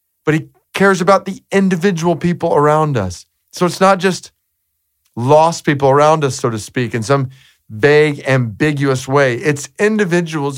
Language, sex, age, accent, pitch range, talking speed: English, male, 40-59, American, 115-155 Hz, 155 wpm